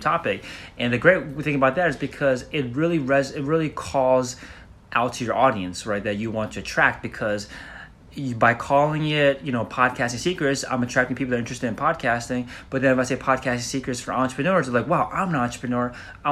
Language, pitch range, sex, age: English, 110-135 Hz, male, 30-49